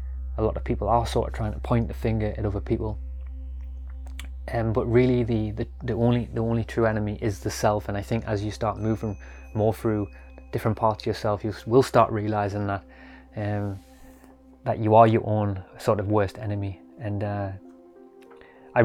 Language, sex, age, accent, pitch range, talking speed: English, male, 20-39, British, 100-115 Hz, 195 wpm